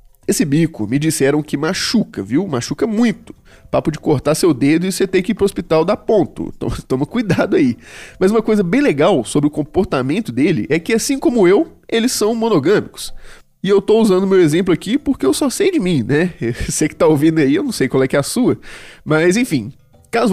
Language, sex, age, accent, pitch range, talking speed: Portuguese, male, 20-39, Brazilian, 160-245 Hz, 220 wpm